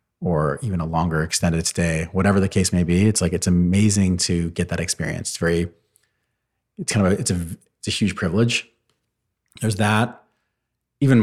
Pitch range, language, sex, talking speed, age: 85-100 Hz, English, male, 170 wpm, 30-49